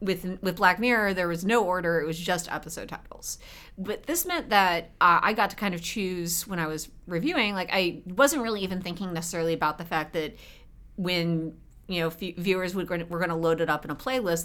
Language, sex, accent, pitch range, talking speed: English, female, American, 160-205 Hz, 220 wpm